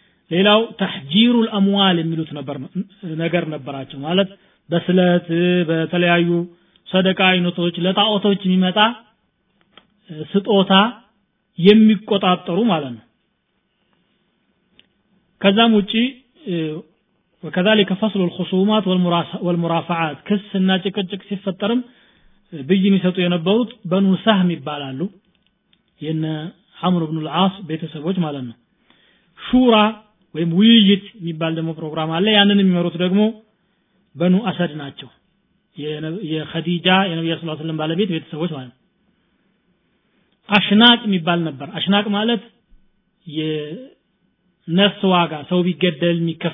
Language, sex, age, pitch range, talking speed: Amharic, male, 40-59, 165-200 Hz, 90 wpm